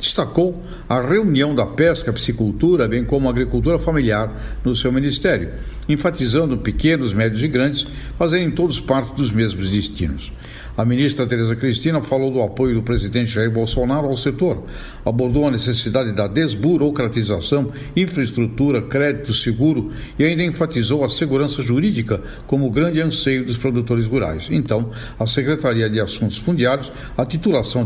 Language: English